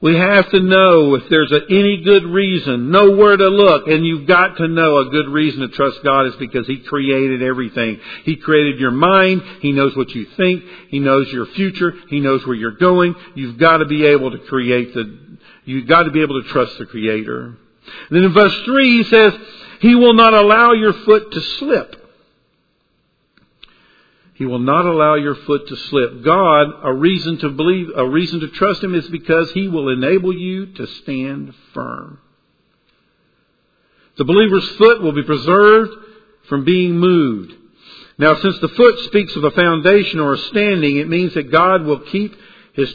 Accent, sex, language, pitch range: American, male, English, 135-185 Hz